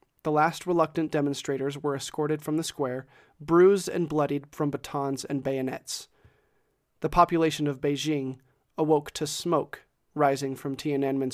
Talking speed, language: 140 wpm, English